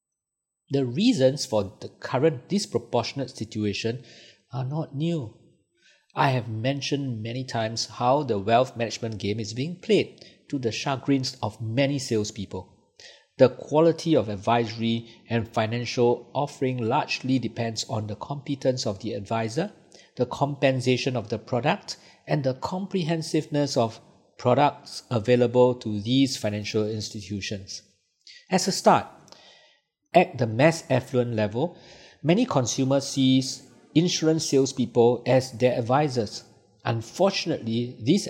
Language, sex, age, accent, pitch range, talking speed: English, male, 50-69, Malaysian, 115-145 Hz, 120 wpm